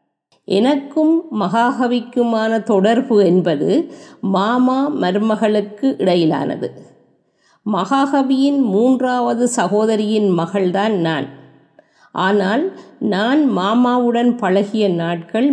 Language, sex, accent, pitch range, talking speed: Tamil, female, native, 195-245 Hz, 65 wpm